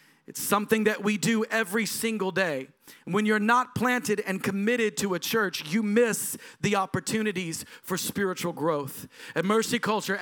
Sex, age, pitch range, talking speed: male, 40-59, 190-230 Hz, 160 wpm